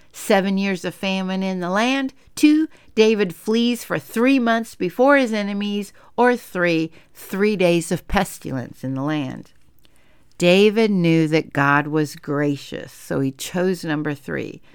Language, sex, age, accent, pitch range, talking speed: English, female, 60-79, American, 155-215 Hz, 145 wpm